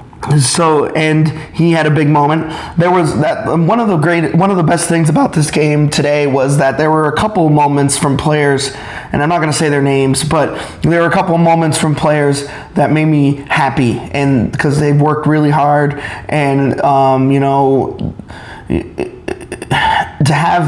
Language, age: English, 30-49